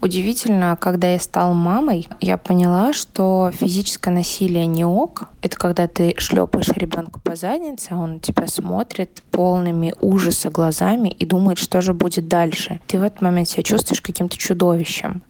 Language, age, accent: Russian, 20-39, native